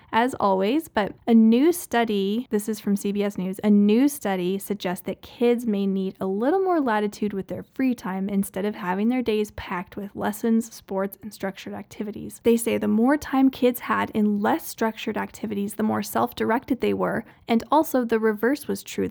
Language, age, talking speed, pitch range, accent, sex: English, 20-39, 190 wpm, 195-235 Hz, American, female